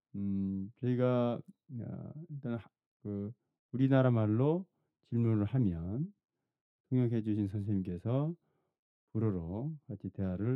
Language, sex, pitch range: Korean, male, 95-125 Hz